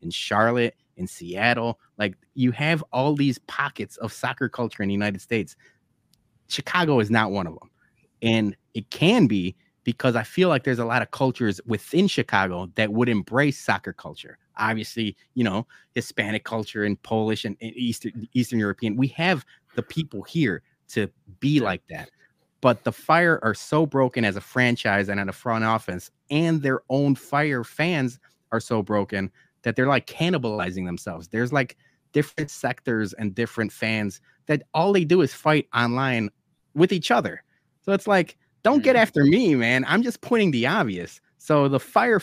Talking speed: 175 wpm